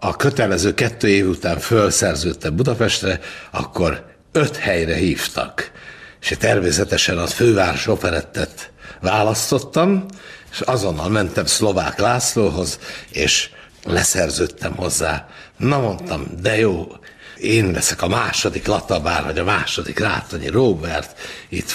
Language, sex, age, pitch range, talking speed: Hungarian, male, 60-79, 95-125 Hz, 110 wpm